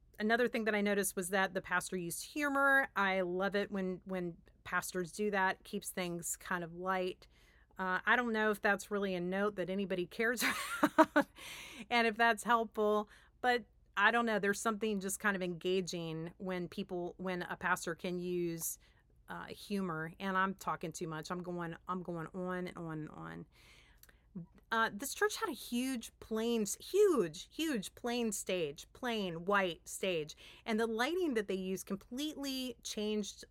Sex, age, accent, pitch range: female, 40-59, American, 185-225 Hz